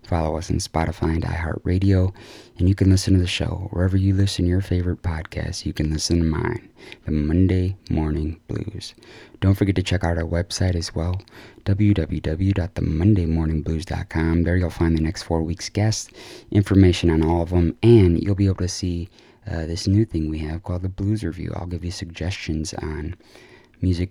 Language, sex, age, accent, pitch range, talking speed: English, male, 20-39, American, 85-100 Hz, 185 wpm